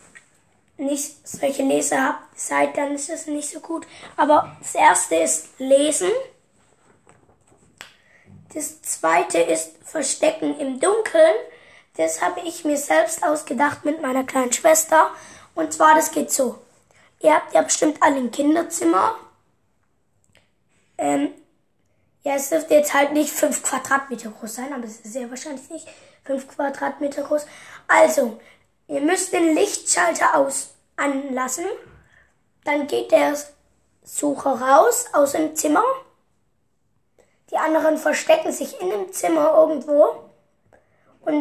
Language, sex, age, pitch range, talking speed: German, female, 20-39, 275-330 Hz, 130 wpm